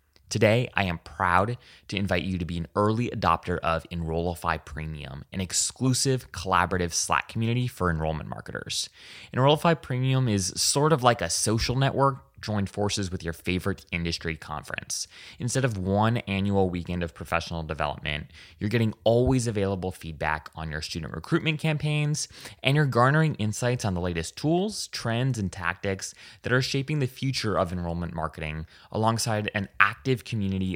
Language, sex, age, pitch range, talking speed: English, male, 20-39, 85-115 Hz, 155 wpm